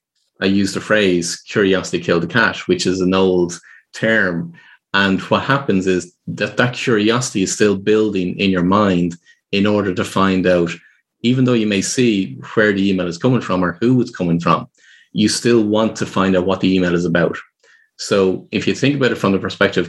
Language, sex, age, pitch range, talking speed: English, male, 30-49, 90-115 Hz, 205 wpm